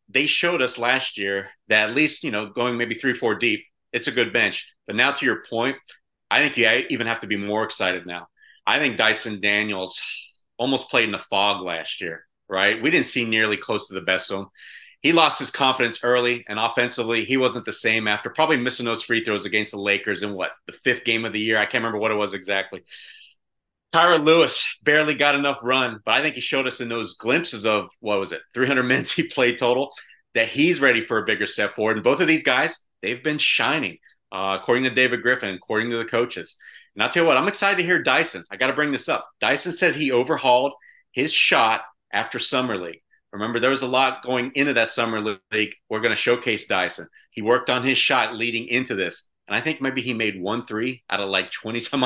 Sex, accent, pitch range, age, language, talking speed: male, American, 105-135 Hz, 30-49, English, 230 wpm